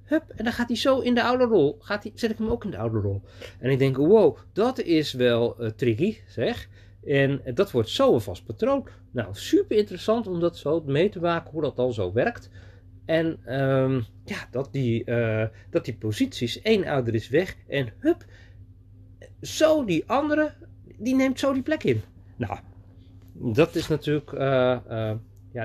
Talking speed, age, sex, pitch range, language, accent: 190 wpm, 40-59, male, 105-165 Hz, Dutch, Dutch